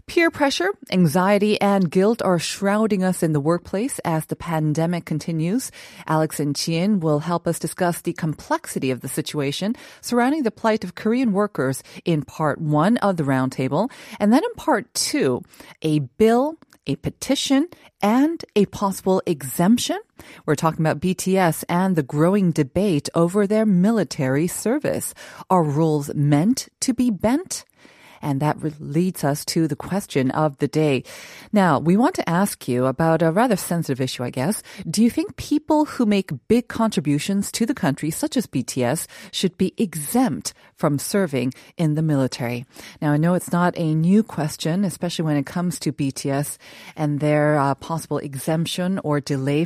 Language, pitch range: Korean, 150-205 Hz